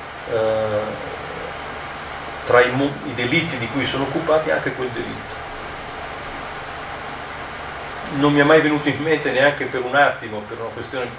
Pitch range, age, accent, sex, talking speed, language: 125-155 Hz, 40-59, native, male, 130 wpm, Italian